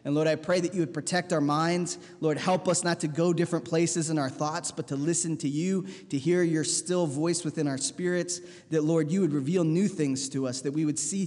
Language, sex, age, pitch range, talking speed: English, male, 20-39, 130-170 Hz, 250 wpm